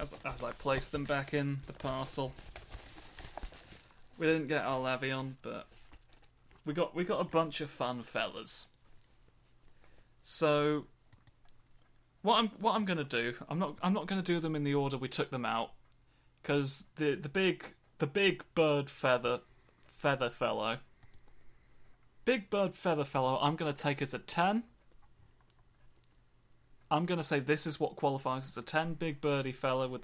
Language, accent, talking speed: English, British, 160 wpm